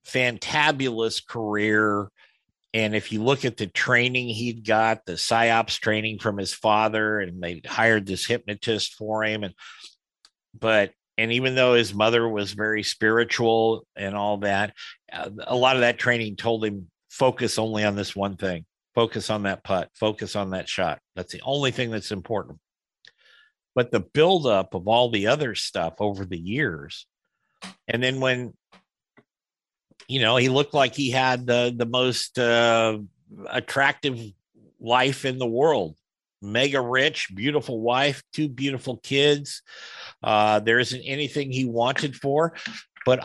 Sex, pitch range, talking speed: male, 105-130 Hz, 150 wpm